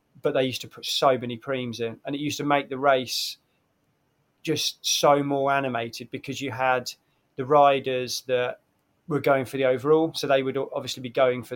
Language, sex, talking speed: English, male, 195 wpm